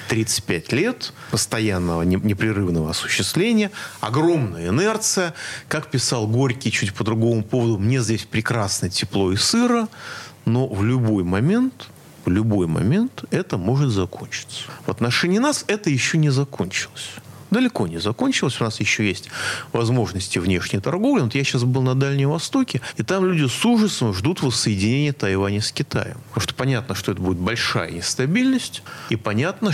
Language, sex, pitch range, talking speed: Russian, male, 105-150 Hz, 150 wpm